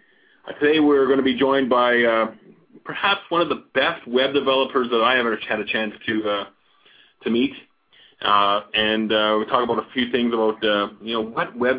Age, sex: 30-49, male